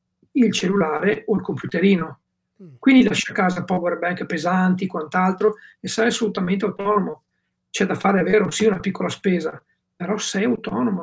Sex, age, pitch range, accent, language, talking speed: male, 50-69, 185-225 Hz, native, Italian, 160 wpm